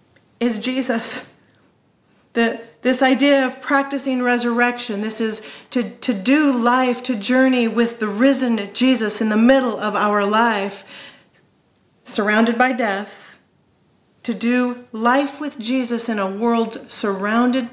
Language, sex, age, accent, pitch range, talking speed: English, female, 40-59, American, 205-245 Hz, 130 wpm